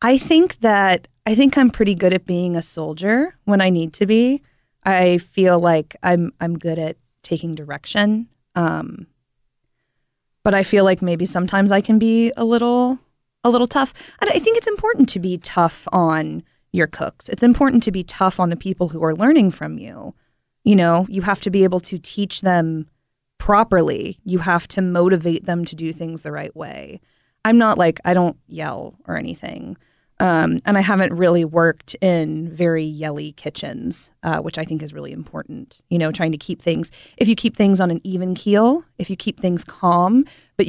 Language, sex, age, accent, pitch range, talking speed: English, female, 20-39, American, 160-210 Hz, 195 wpm